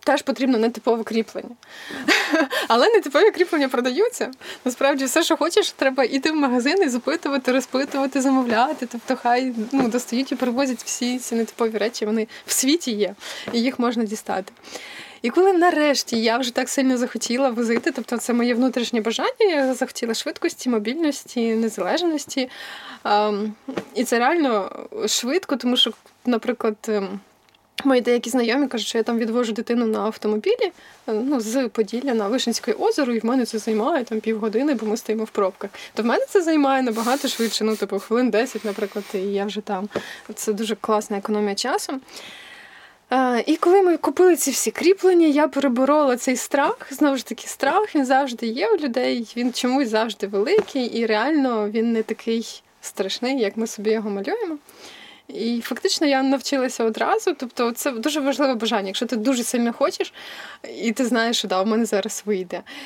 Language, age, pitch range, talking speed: Ukrainian, 20-39, 225-280 Hz, 160 wpm